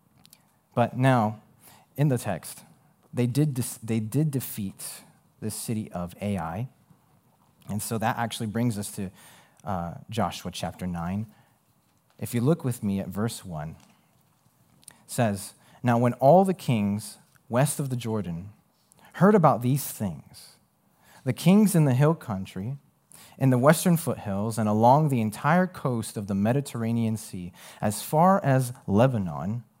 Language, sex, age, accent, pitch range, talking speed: English, male, 30-49, American, 105-140 Hz, 145 wpm